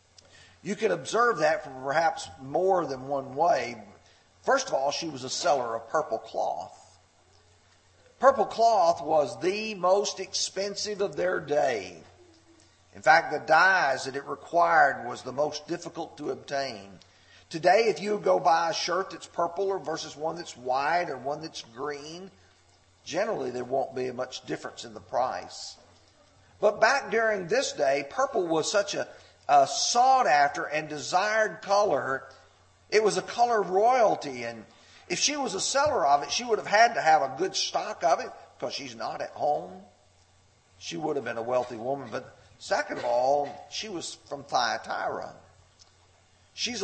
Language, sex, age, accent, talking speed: English, male, 40-59, American, 165 wpm